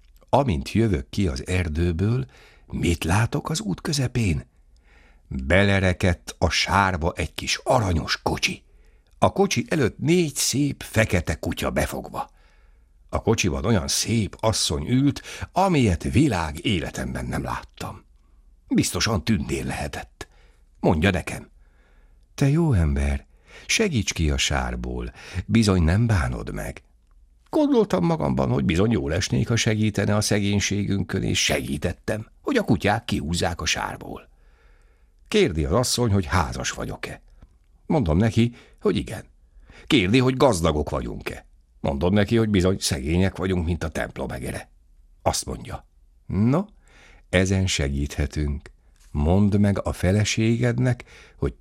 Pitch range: 75-110 Hz